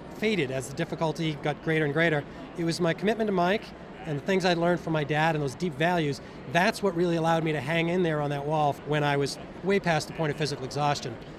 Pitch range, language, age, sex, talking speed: 150-180 Hz, English, 40-59, male, 255 wpm